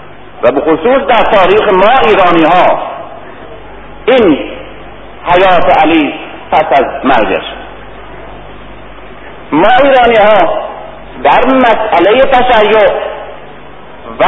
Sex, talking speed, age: male, 85 wpm, 50-69